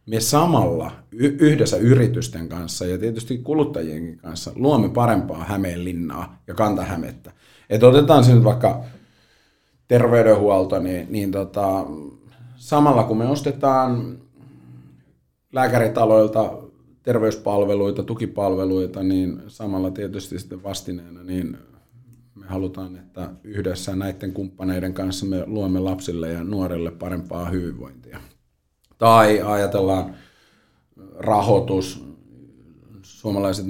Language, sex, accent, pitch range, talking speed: Finnish, male, native, 90-110 Hz, 95 wpm